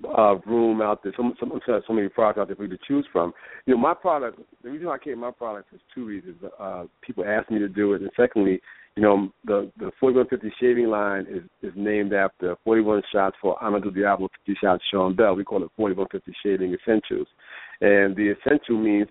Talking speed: 215 wpm